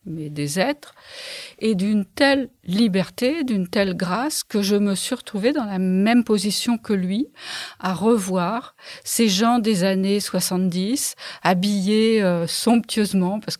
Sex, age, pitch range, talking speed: female, 50-69, 170-205 Hz, 140 wpm